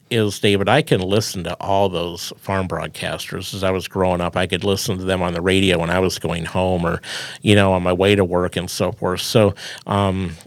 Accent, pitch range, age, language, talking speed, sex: American, 95-115 Hz, 50-69, English, 235 wpm, male